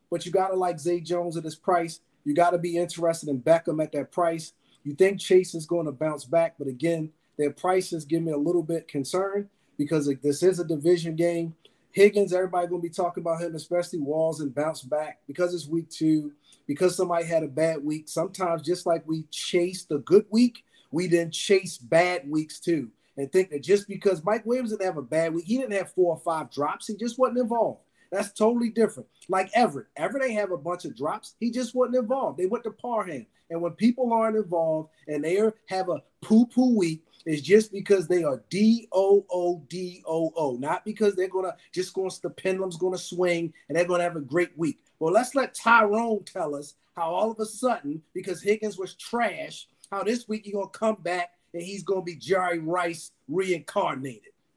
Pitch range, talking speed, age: 160-200 Hz, 210 wpm, 30-49